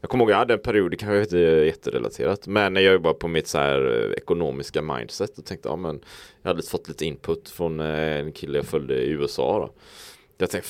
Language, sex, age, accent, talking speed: Swedish, male, 20-39, Norwegian, 220 wpm